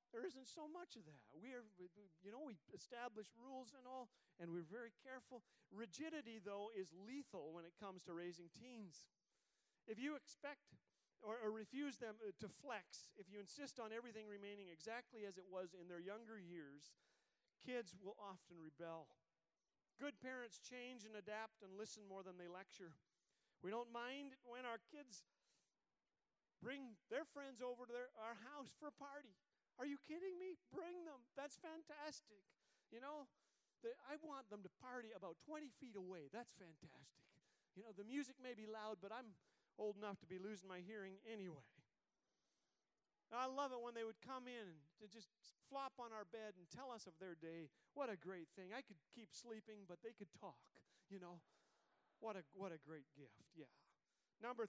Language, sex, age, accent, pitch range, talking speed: English, male, 40-59, American, 190-255 Hz, 180 wpm